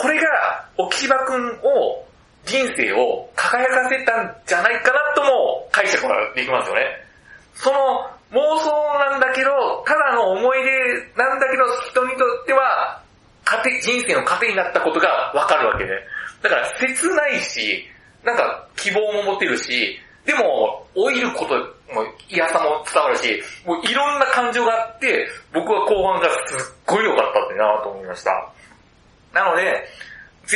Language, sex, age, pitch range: Japanese, male, 40-59, 220-300 Hz